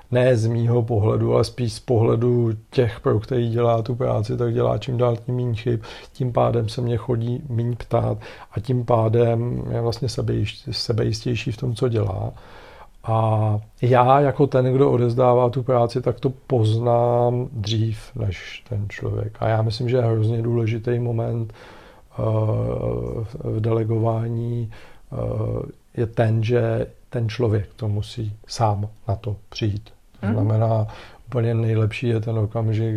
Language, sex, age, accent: Czech, male, 50-69, native